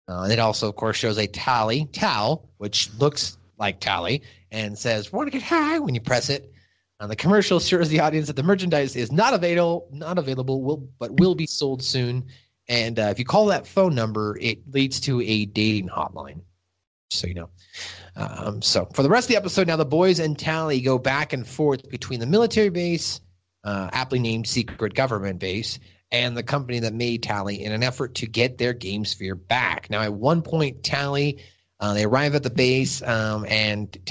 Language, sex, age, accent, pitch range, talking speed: English, male, 30-49, American, 105-145 Hz, 205 wpm